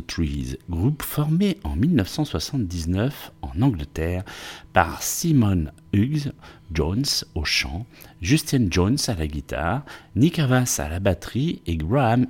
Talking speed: 125 wpm